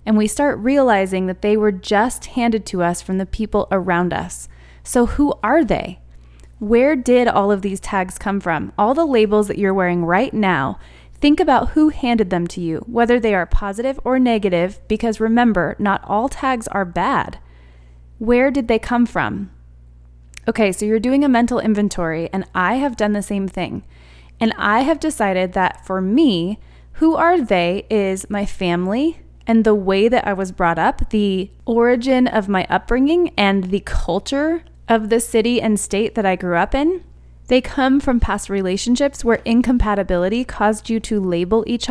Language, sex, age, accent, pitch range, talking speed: English, female, 20-39, American, 185-240 Hz, 180 wpm